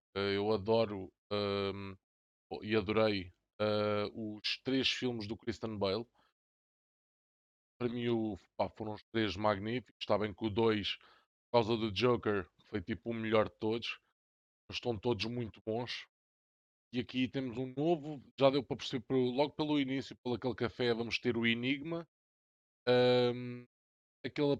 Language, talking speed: Portuguese, 135 wpm